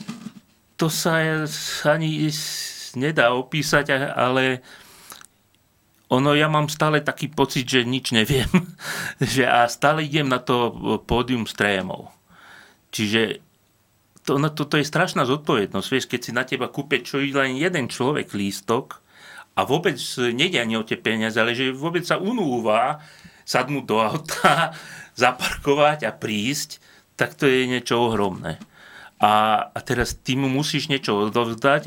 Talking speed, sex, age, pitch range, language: 140 wpm, male, 30-49, 110-140 Hz, Slovak